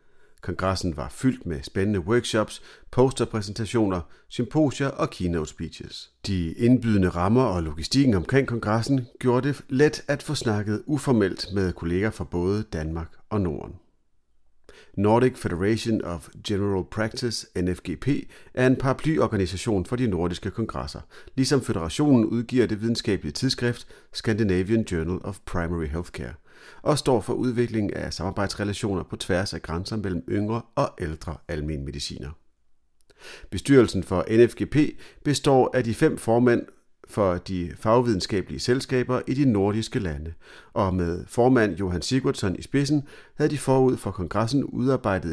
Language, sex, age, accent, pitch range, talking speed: Danish, male, 40-59, native, 90-125 Hz, 135 wpm